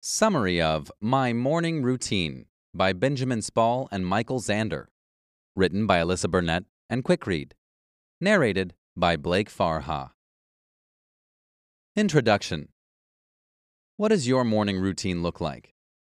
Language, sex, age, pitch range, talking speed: English, male, 30-49, 95-130 Hz, 110 wpm